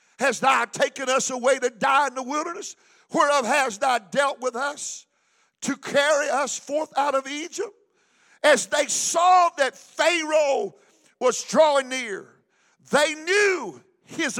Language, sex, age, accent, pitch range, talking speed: English, male, 50-69, American, 255-325 Hz, 140 wpm